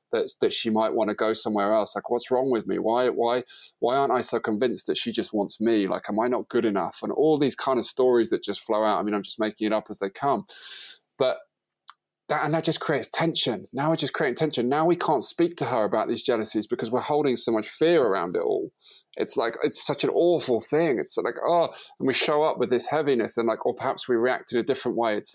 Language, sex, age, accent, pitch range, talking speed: English, male, 20-39, British, 110-170 Hz, 260 wpm